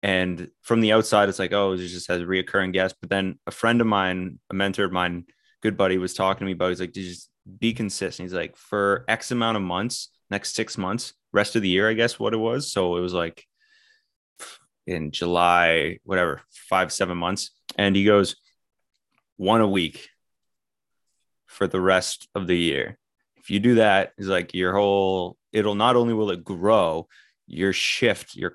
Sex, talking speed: male, 200 wpm